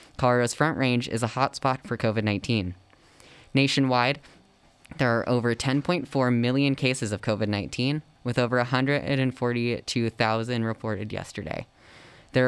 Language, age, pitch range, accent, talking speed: English, 10-29, 110-135 Hz, American, 110 wpm